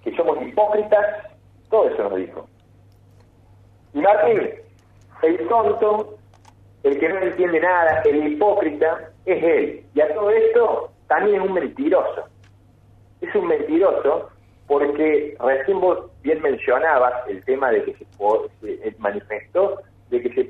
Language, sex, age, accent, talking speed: Spanish, male, 40-59, Argentinian, 130 wpm